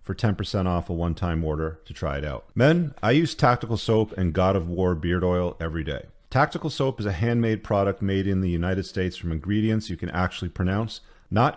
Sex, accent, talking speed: male, American, 215 wpm